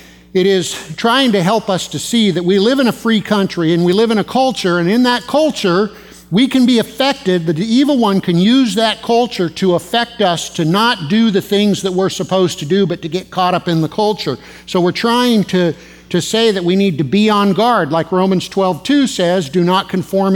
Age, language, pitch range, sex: 50-69, English, 165-200 Hz, male